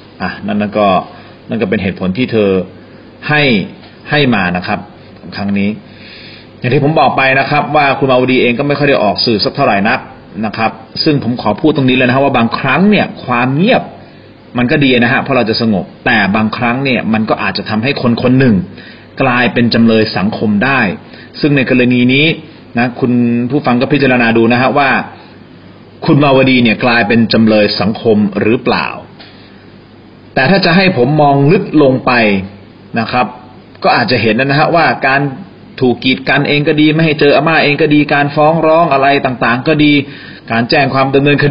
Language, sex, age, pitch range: Thai, male, 30-49, 115-145 Hz